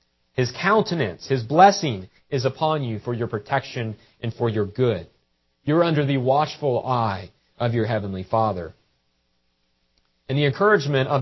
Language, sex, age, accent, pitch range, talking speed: English, male, 40-59, American, 95-140 Hz, 145 wpm